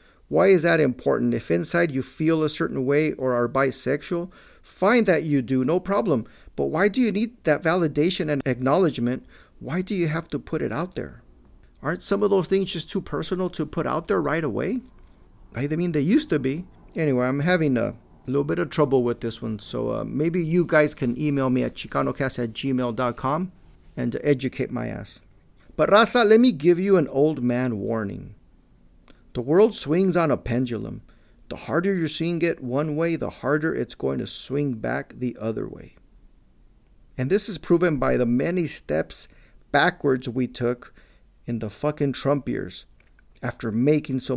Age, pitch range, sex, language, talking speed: 40-59, 125-170 Hz, male, English, 185 wpm